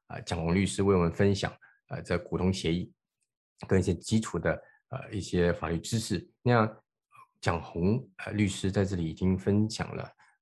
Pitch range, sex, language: 85-100 Hz, male, Chinese